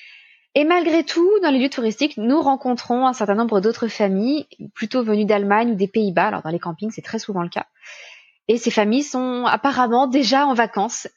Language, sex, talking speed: French, female, 200 wpm